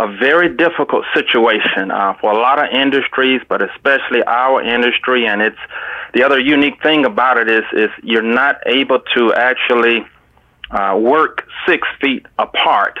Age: 30-49